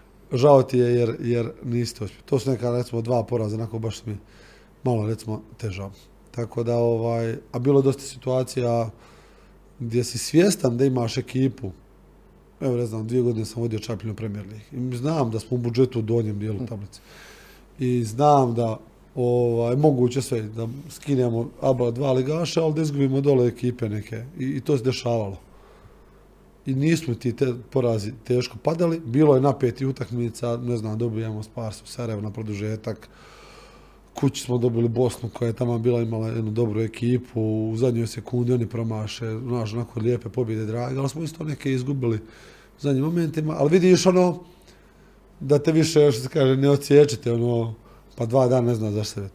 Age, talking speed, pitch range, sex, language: 20-39, 170 wpm, 115-135 Hz, male, Croatian